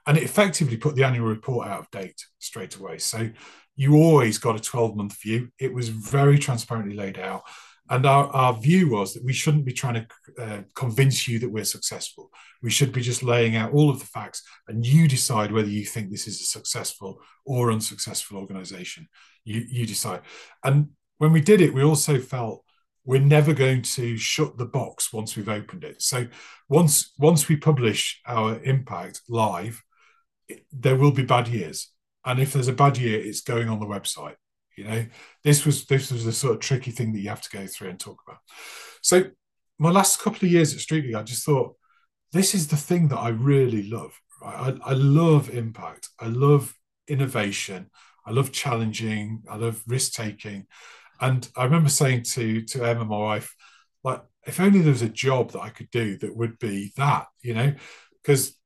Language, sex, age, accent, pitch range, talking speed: English, male, 40-59, British, 110-145 Hz, 195 wpm